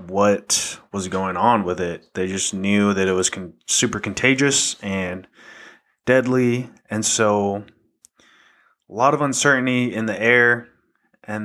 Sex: male